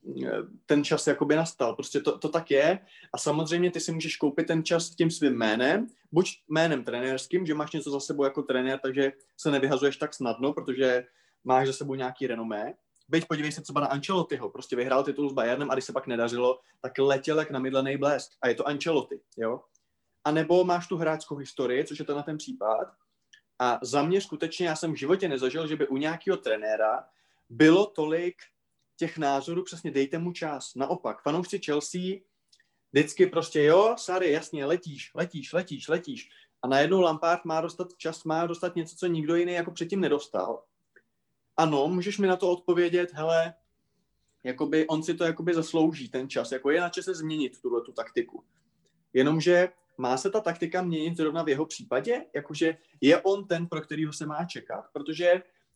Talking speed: 180 wpm